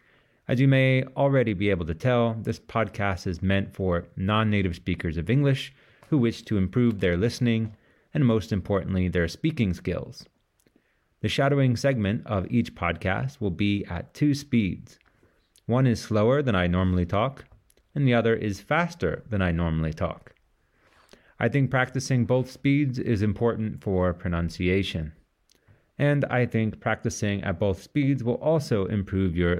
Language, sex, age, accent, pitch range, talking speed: English, male, 30-49, American, 95-125 Hz, 155 wpm